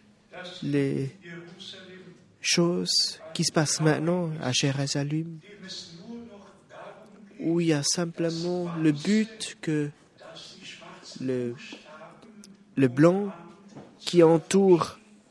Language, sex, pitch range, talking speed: French, male, 160-215 Hz, 80 wpm